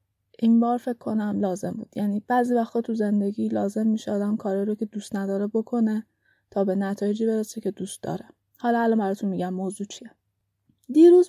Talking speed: 180 wpm